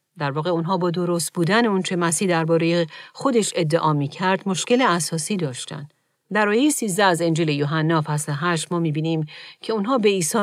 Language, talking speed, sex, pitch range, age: Persian, 175 wpm, female, 150-190 Hz, 40-59